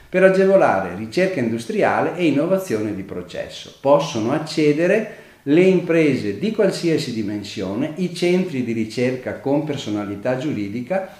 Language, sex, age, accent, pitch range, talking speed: Italian, male, 50-69, native, 110-175 Hz, 120 wpm